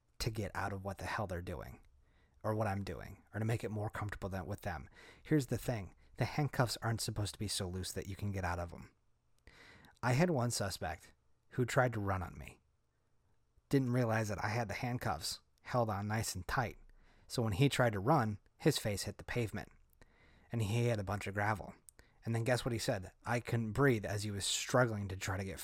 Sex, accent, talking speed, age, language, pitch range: male, American, 225 wpm, 30-49, English, 100-125 Hz